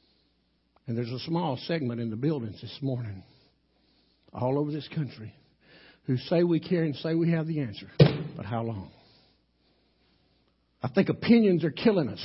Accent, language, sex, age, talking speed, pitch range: American, English, male, 60-79, 160 wpm, 150-220 Hz